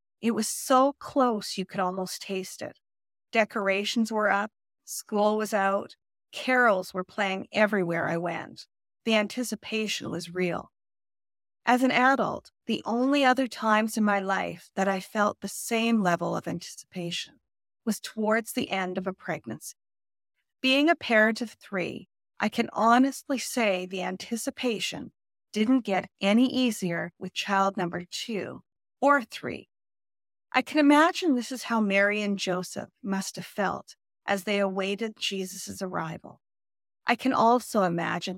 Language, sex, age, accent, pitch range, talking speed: English, female, 30-49, American, 190-245 Hz, 145 wpm